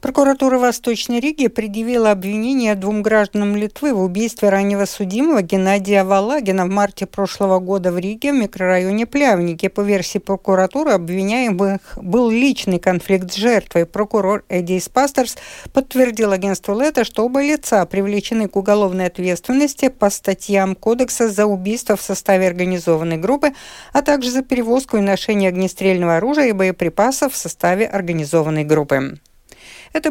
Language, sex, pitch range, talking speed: Russian, female, 190-240 Hz, 140 wpm